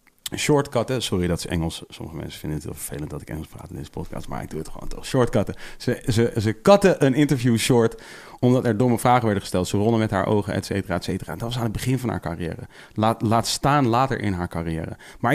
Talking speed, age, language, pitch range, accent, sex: 245 wpm, 30-49, Dutch, 100-130 Hz, Dutch, male